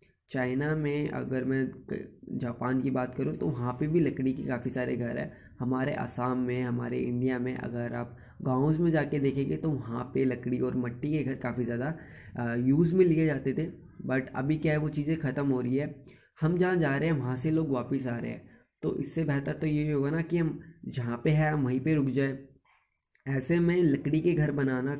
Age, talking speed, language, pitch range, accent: 20-39, 215 wpm, Hindi, 125-150 Hz, native